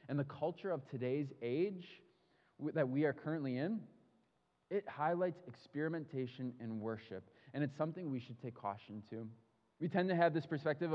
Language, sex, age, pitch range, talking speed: English, male, 20-39, 125-170 Hz, 165 wpm